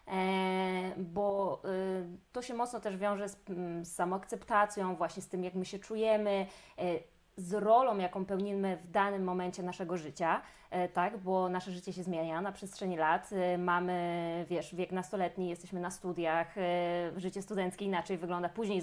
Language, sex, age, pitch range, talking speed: Polish, female, 20-39, 180-215 Hz, 145 wpm